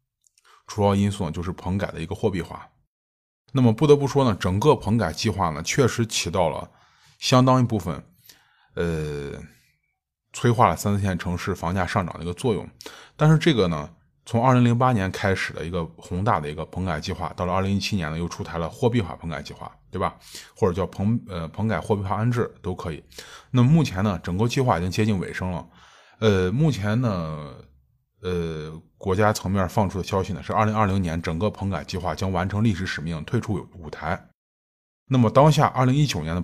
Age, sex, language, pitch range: 20-39, male, Chinese, 85-115 Hz